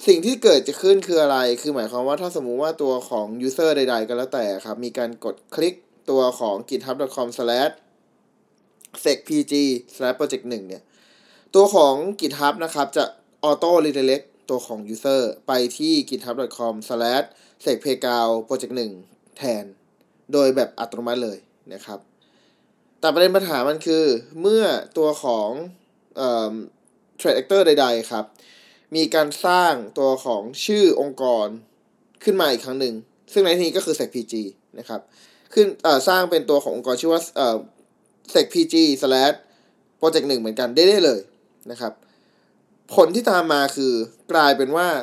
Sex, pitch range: male, 120-165 Hz